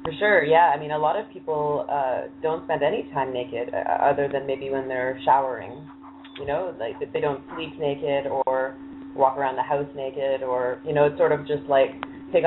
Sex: female